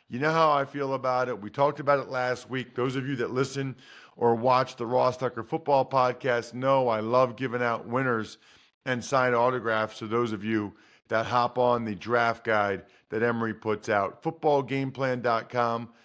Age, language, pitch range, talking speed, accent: 40-59, English, 120-150 Hz, 185 wpm, American